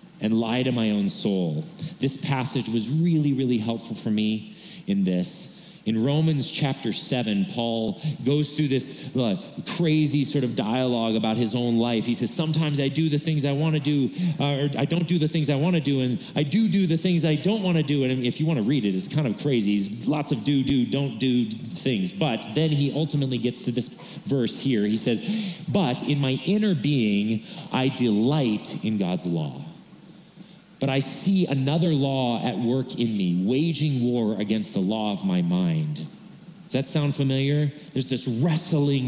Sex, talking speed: male, 195 wpm